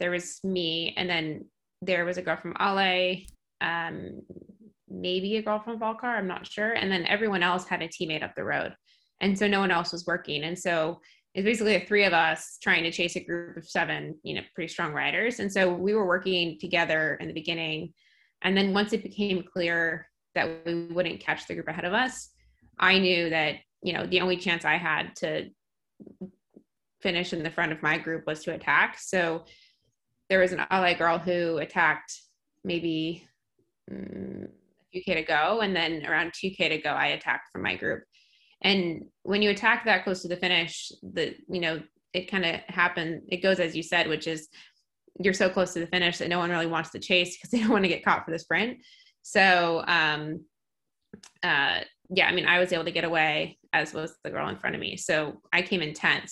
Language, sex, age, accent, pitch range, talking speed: English, female, 20-39, American, 165-190 Hz, 210 wpm